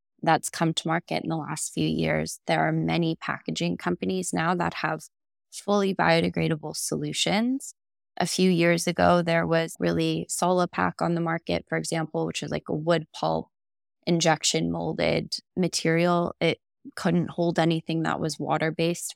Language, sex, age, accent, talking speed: English, female, 20-39, American, 155 wpm